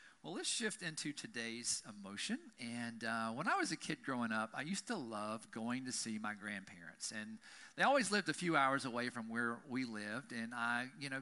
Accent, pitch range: American, 130-180 Hz